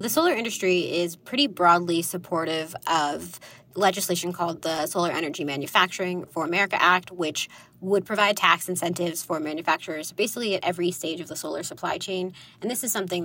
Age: 20-39